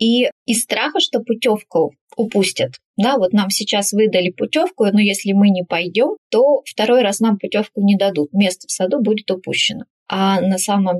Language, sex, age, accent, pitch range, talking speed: Russian, female, 20-39, native, 195-230 Hz, 175 wpm